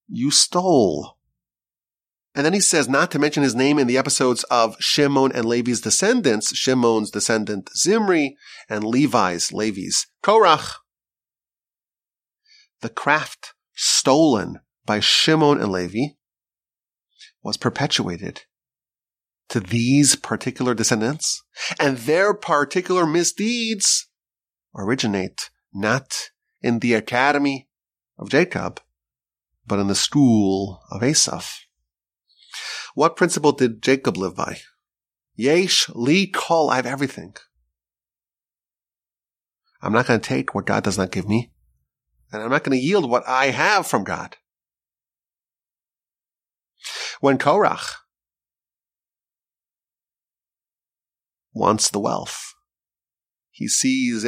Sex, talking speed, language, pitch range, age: male, 105 wpm, English, 95-145 Hz, 30-49